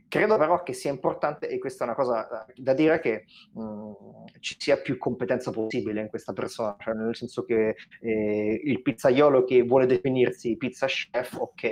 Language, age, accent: Italian, 30-49, native